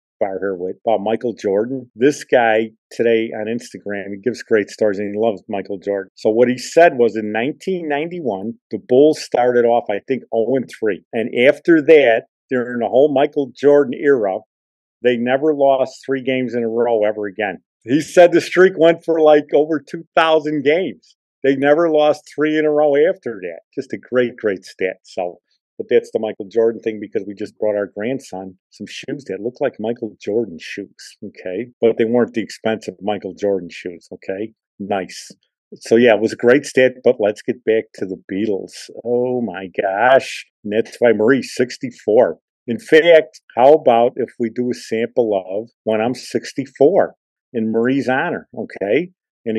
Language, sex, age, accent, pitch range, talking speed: English, male, 50-69, American, 110-150 Hz, 185 wpm